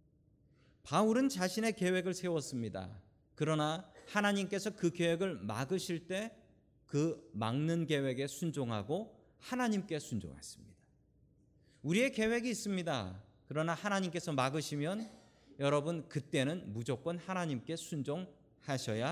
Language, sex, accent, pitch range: Korean, male, native, 130-195 Hz